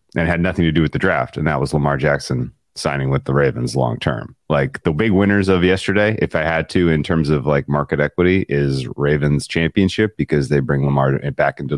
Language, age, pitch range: English, 30-49, 70-80 Hz